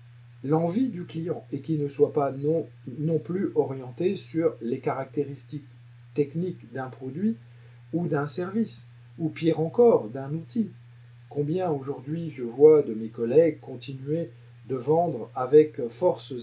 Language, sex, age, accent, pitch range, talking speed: French, male, 40-59, French, 120-160 Hz, 140 wpm